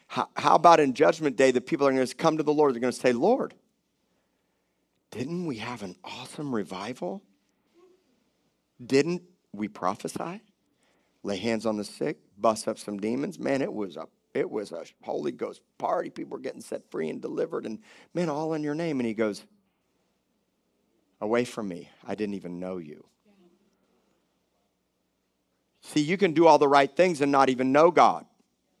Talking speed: 170 wpm